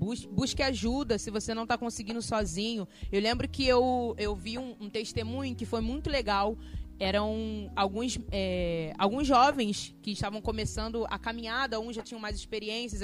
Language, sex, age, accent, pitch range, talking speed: Portuguese, female, 20-39, Brazilian, 215-275 Hz, 170 wpm